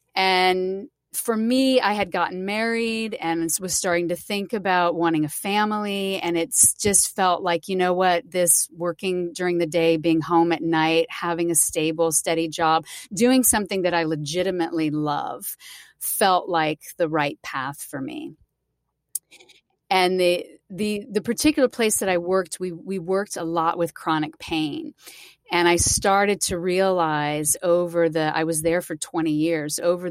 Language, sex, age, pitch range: English, female, 30-49, 155-185 Hz